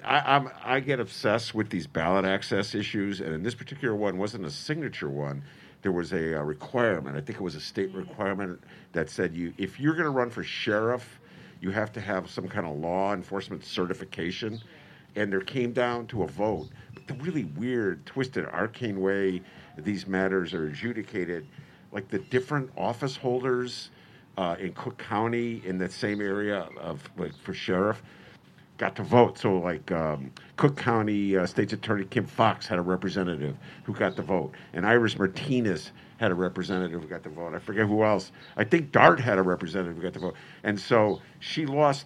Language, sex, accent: English, male, American